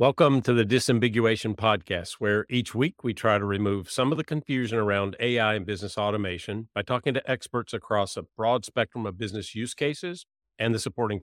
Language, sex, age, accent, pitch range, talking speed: English, male, 50-69, American, 100-120 Hz, 190 wpm